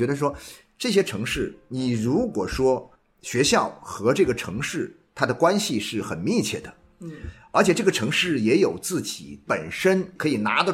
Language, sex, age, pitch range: Chinese, male, 50-69, 135-200 Hz